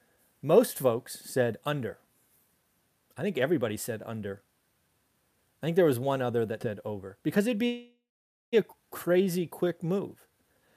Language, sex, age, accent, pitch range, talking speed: English, male, 40-59, American, 115-145 Hz, 140 wpm